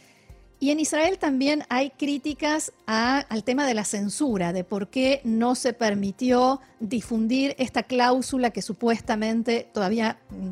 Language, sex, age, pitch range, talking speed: Spanish, female, 40-59, 210-280 Hz, 145 wpm